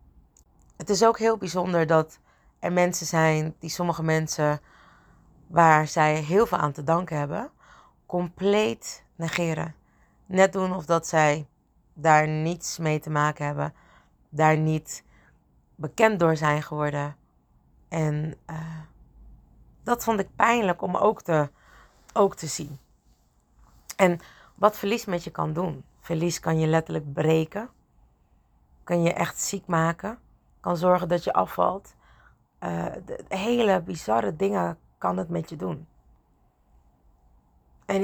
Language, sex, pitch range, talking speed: Dutch, female, 145-180 Hz, 130 wpm